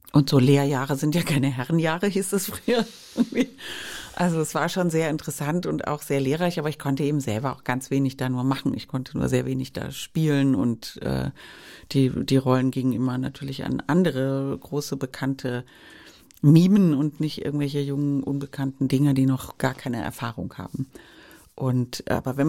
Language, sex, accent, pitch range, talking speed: German, female, German, 125-145 Hz, 175 wpm